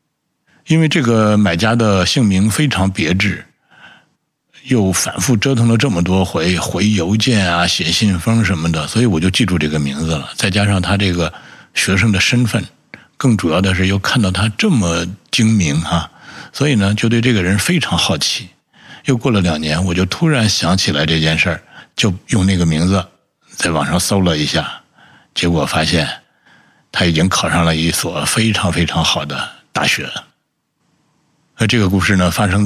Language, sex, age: Chinese, male, 60-79